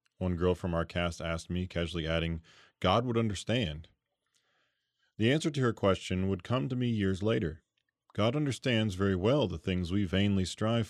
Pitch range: 90-115 Hz